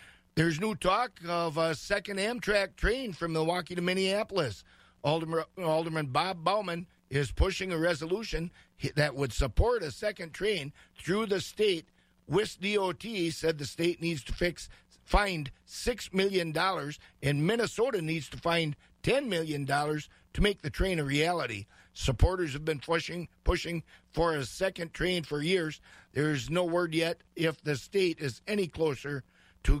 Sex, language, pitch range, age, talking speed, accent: male, English, 150-190 Hz, 50-69, 145 wpm, American